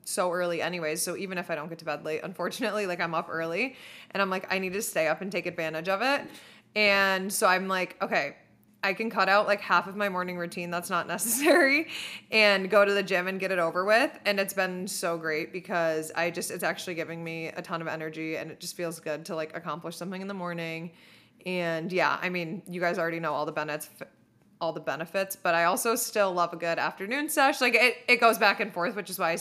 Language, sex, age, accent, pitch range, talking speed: English, female, 20-39, American, 170-210 Hz, 245 wpm